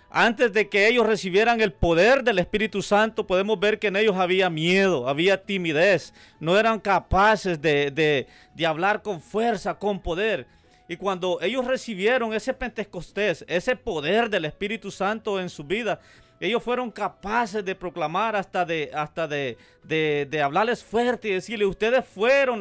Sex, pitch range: male, 175-220 Hz